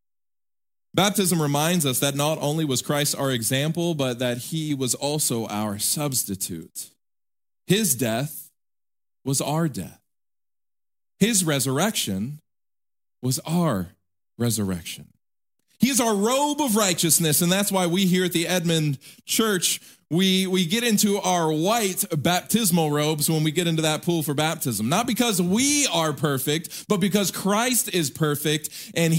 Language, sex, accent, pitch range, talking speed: English, male, American, 130-190 Hz, 140 wpm